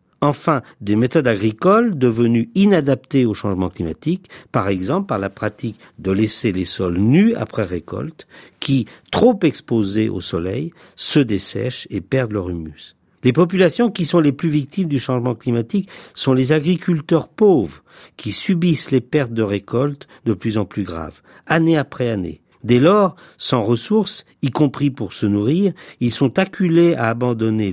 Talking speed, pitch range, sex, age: 160 wpm, 105-160 Hz, male, 50-69